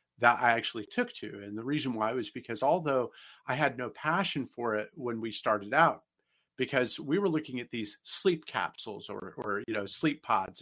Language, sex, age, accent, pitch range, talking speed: English, male, 40-59, American, 120-165 Hz, 205 wpm